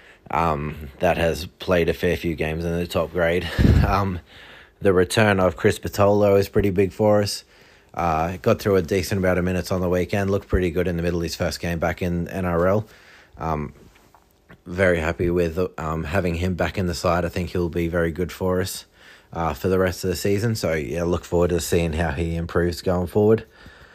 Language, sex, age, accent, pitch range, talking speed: English, male, 20-39, Australian, 80-90 Hz, 210 wpm